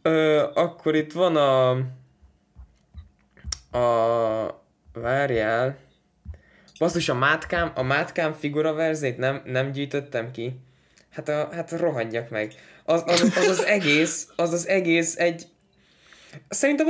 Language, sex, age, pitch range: Hungarian, male, 20-39, 120-170 Hz